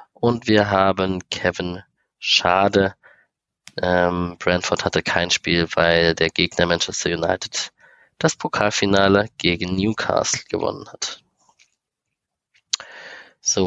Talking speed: 95 wpm